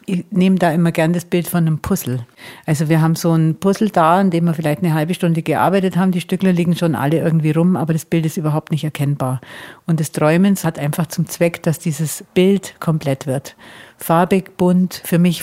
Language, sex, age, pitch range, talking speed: German, female, 50-69, 150-180 Hz, 220 wpm